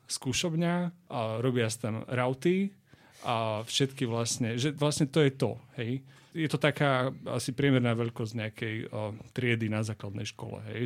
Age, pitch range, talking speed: 30-49, 115-135 Hz, 155 wpm